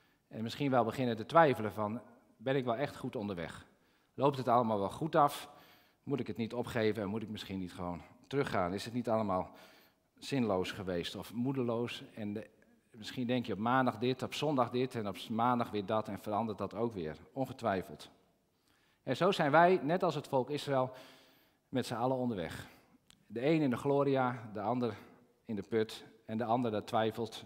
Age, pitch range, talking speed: 50-69, 110-150 Hz, 190 wpm